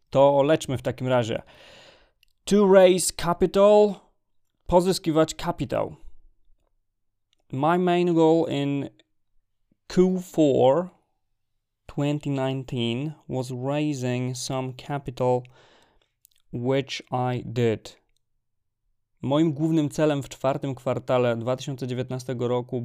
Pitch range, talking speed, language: 110-145 Hz, 80 wpm, Polish